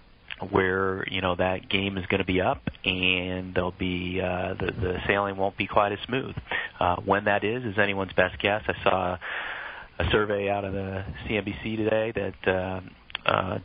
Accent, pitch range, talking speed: American, 90-100 Hz, 185 wpm